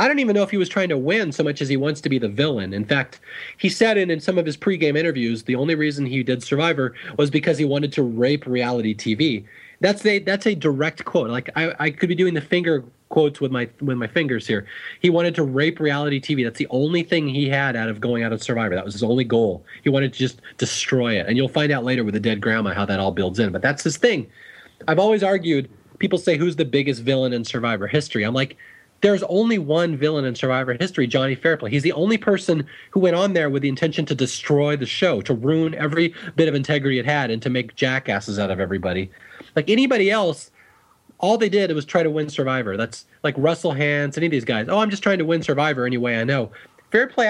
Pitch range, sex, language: 125-170 Hz, male, English